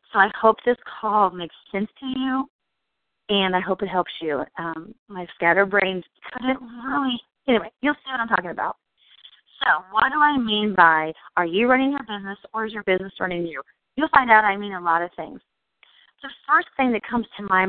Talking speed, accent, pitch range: 205 wpm, American, 180-230 Hz